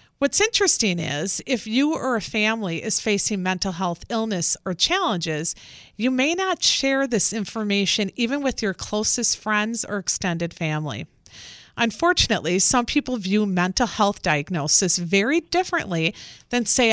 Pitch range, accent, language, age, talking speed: 180-250 Hz, American, English, 40-59, 140 wpm